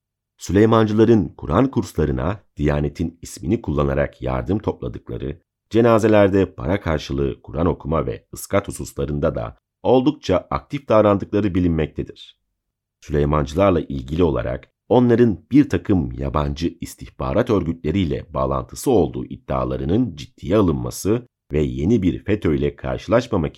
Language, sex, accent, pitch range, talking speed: Turkish, male, native, 70-100 Hz, 105 wpm